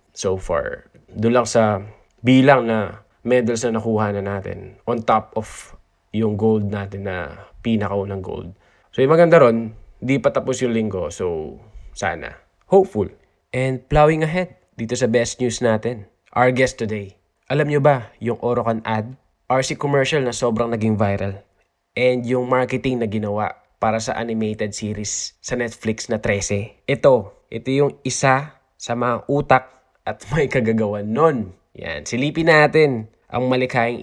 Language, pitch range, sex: Filipino, 110-135 Hz, male